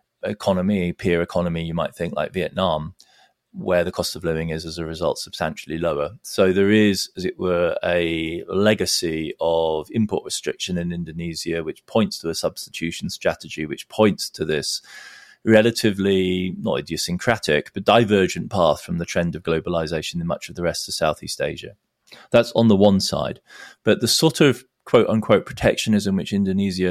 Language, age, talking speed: English, 30-49, 165 wpm